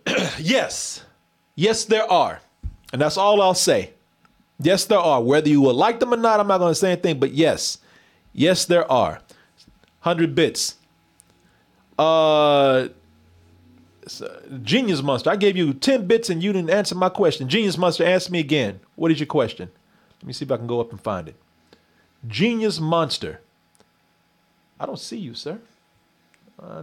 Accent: American